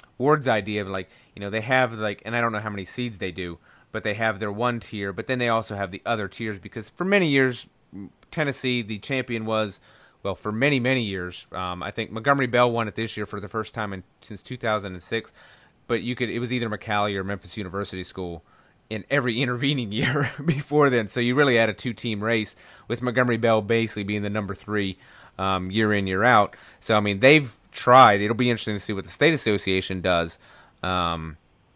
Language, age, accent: English, 30-49, American